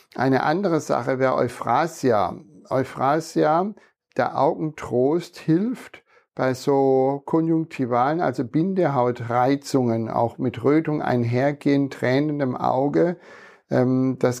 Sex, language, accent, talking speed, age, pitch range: male, German, German, 90 wpm, 60-79, 120-140 Hz